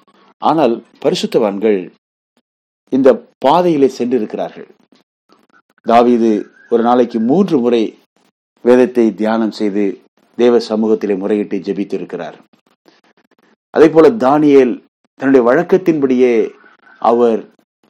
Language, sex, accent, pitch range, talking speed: Tamil, male, native, 105-130 Hz, 75 wpm